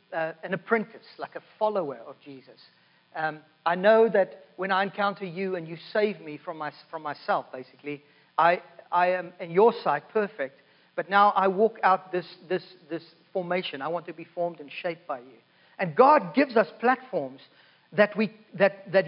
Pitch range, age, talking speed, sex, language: 180-240 Hz, 40-59, 175 wpm, male, English